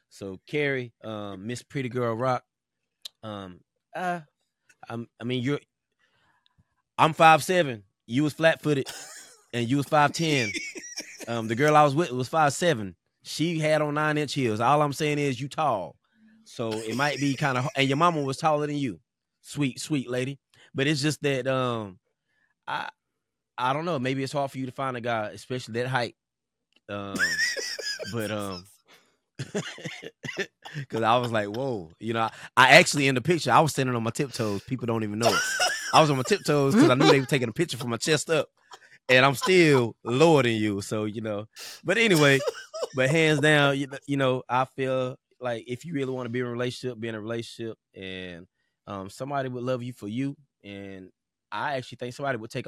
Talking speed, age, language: 200 wpm, 20-39, English